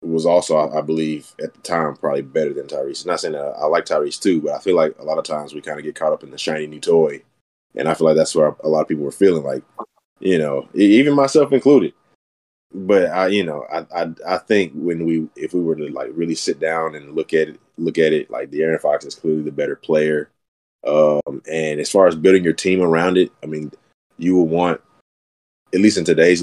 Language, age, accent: English, 20-39, American